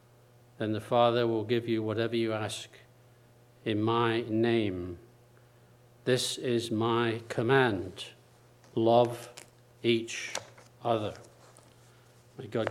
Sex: male